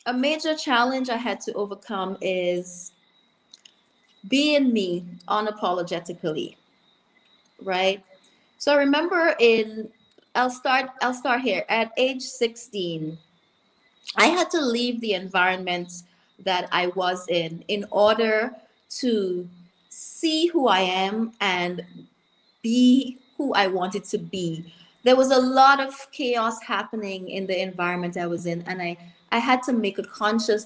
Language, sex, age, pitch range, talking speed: English, female, 20-39, 175-235 Hz, 135 wpm